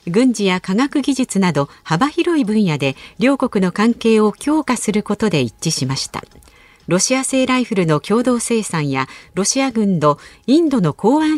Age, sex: 50-69, female